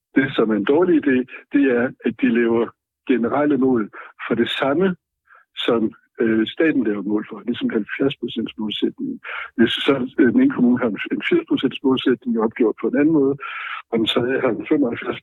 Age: 60-79